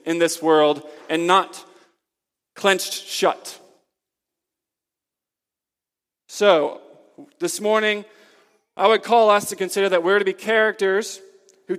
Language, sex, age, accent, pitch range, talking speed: English, male, 40-59, American, 175-215 Hz, 110 wpm